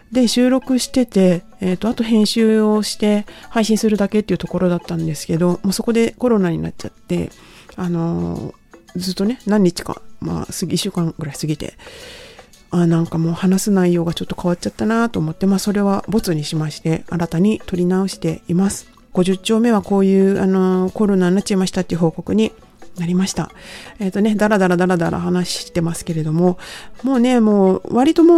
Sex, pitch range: female, 175-215 Hz